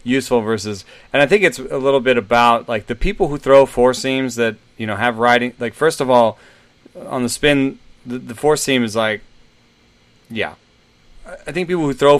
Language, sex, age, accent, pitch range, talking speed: English, male, 30-49, American, 105-125 Hz, 200 wpm